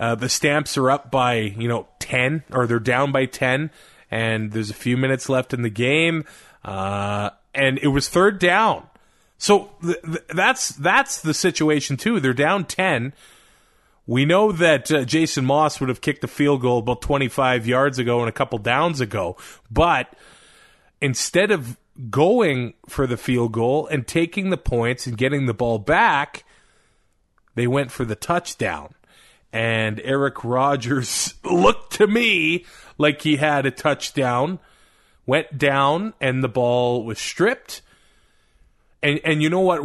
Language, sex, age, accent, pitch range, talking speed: English, male, 30-49, American, 120-150 Hz, 160 wpm